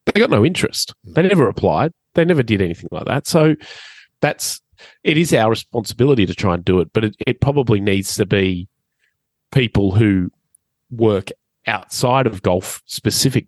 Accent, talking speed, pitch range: Australian, 170 wpm, 95-125 Hz